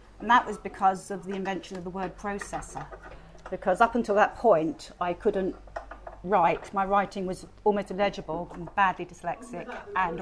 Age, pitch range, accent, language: 40-59, 175-205 Hz, British, English